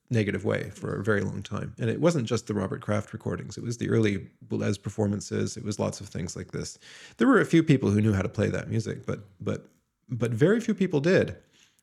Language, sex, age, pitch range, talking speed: English, male, 30-49, 110-135 Hz, 240 wpm